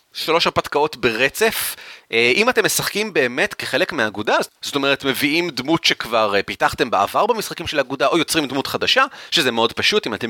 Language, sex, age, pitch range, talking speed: Hebrew, male, 30-49, 120-180 Hz, 170 wpm